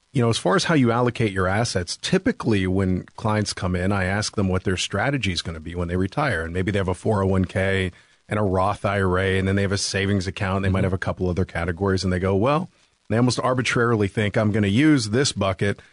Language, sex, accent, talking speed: English, male, American, 250 wpm